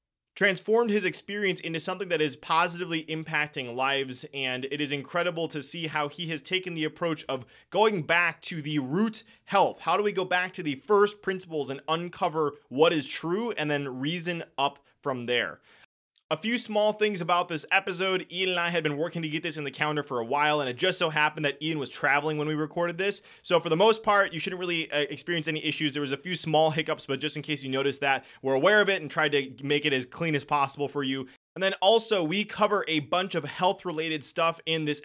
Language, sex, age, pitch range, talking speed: English, male, 20-39, 145-180 Hz, 230 wpm